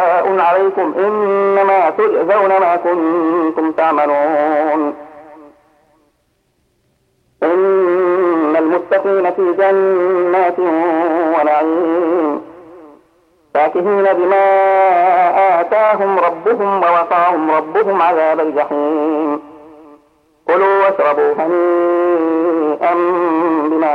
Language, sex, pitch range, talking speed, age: Arabic, male, 155-190 Hz, 55 wpm, 50-69